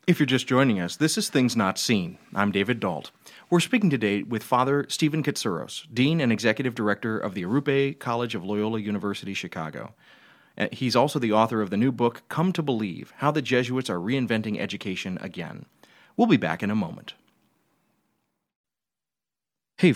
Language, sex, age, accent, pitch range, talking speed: English, male, 30-49, American, 100-130 Hz, 170 wpm